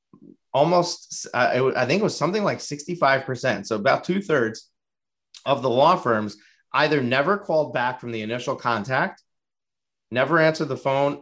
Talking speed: 155 wpm